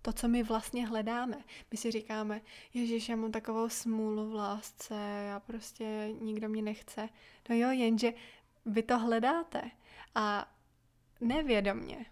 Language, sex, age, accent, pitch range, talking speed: Czech, female, 20-39, native, 220-245 Hz, 140 wpm